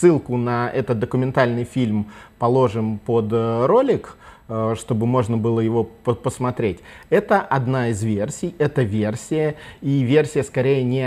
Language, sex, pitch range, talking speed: Russian, male, 115-145 Hz, 125 wpm